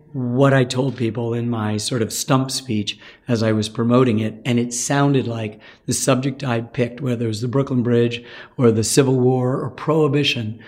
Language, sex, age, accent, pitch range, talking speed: English, male, 50-69, American, 120-140 Hz, 195 wpm